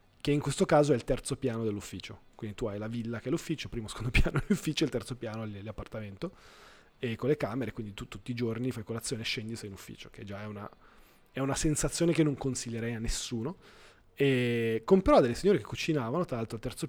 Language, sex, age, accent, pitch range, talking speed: Italian, male, 20-39, native, 115-150 Hz, 225 wpm